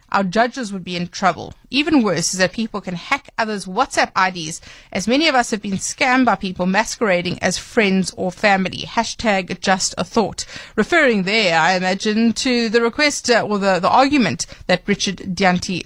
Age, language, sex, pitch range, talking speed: 30-49, English, female, 185-245 Hz, 180 wpm